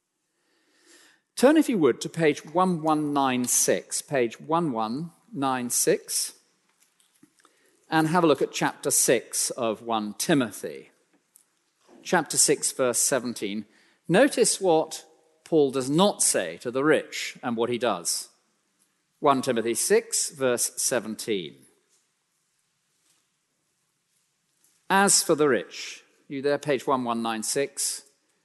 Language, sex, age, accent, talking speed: English, male, 50-69, British, 105 wpm